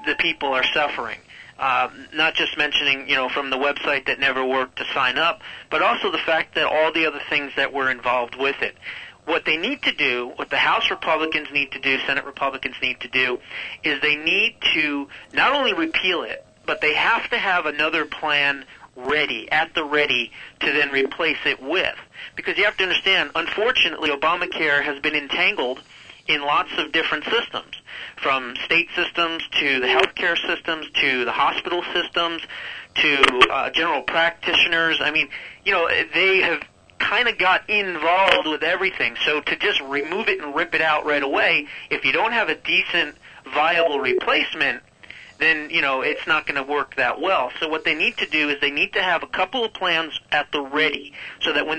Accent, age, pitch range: American, 40-59, 140-165 Hz